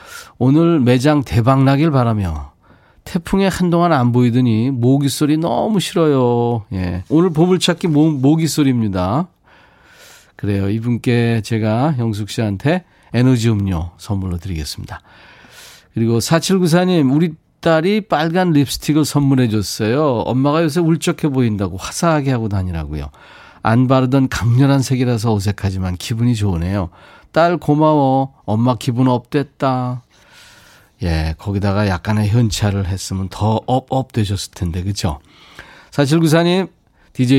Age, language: 40-59, Korean